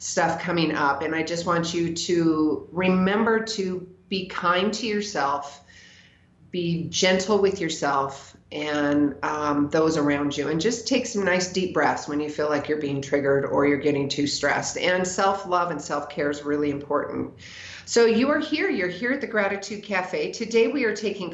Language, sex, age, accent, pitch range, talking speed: English, female, 40-59, American, 150-200 Hz, 180 wpm